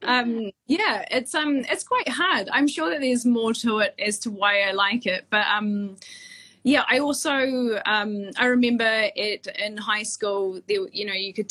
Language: English